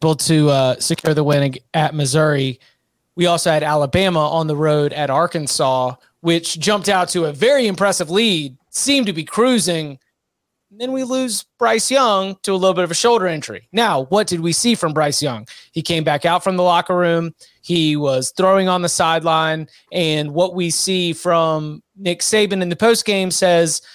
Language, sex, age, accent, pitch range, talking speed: English, male, 30-49, American, 160-195 Hz, 190 wpm